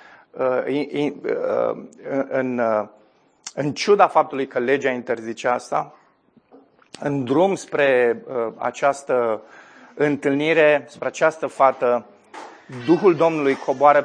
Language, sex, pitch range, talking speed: Romanian, male, 130-165 Hz, 75 wpm